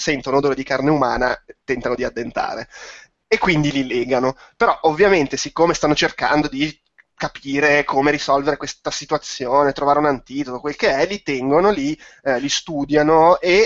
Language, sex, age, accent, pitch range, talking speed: Italian, male, 20-39, native, 130-155 Hz, 160 wpm